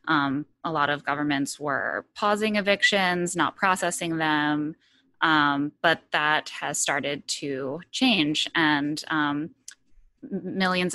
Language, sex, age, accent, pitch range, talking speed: English, female, 20-39, American, 150-175 Hz, 115 wpm